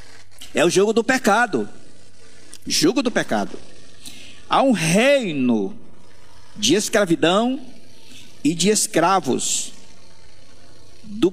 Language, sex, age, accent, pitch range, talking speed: Portuguese, male, 50-69, Brazilian, 105-165 Hz, 90 wpm